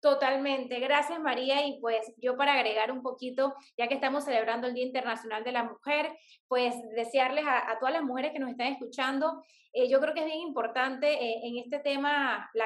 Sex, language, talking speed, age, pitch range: female, Spanish, 205 wpm, 20-39, 240-300 Hz